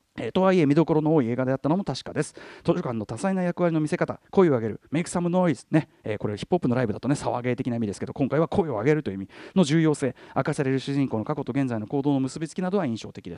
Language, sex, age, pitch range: Japanese, male, 40-59, 130-200 Hz